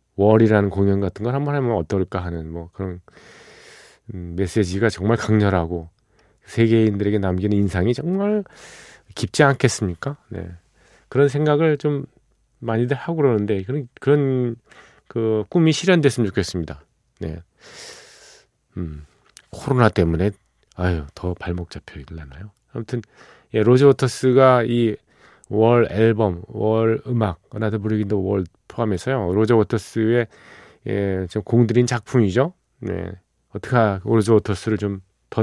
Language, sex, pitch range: Korean, male, 95-125 Hz